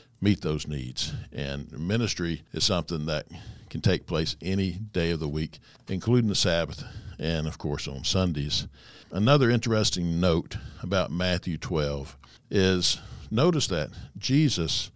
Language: English